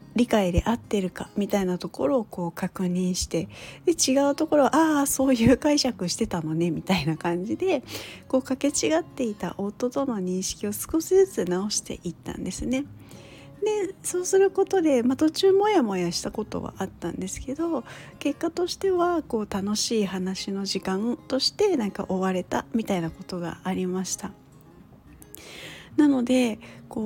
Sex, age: female, 40-59